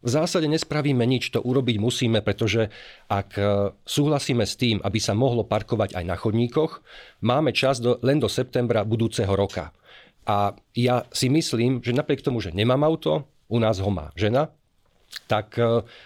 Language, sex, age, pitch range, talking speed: Slovak, male, 40-59, 105-135 Hz, 155 wpm